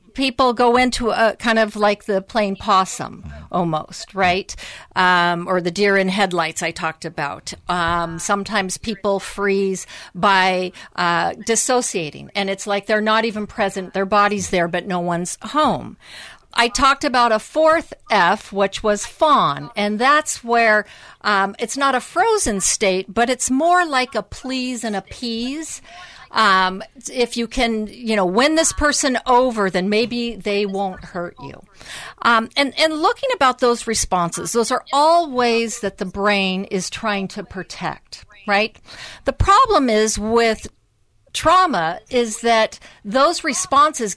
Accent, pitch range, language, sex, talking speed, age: American, 195-250 Hz, English, female, 155 wpm, 50-69